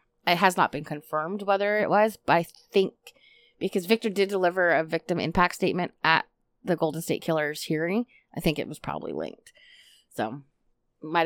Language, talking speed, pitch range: English, 175 wpm, 170-215 Hz